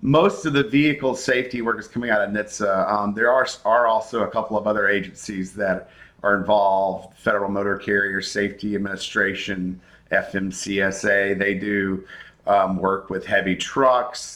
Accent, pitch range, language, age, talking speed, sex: American, 100-115 Hz, English, 50-69, 155 wpm, male